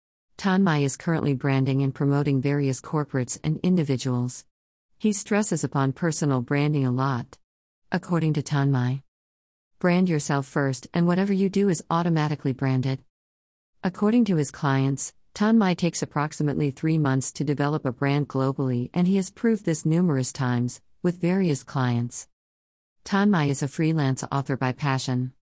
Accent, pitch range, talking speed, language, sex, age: American, 130-160 Hz, 145 wpm, English, female, 50-69